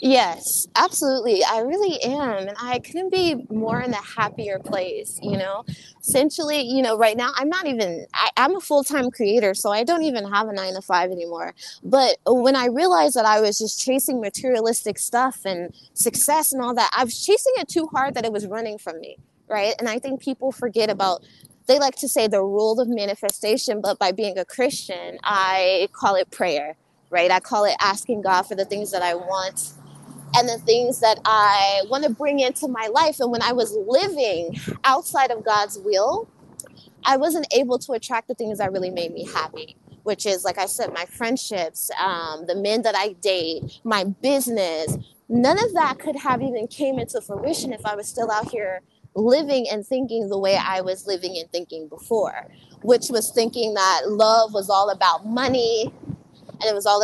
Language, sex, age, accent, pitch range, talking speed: English, female, 20-39, American, 195-260 Hz, 195 wpm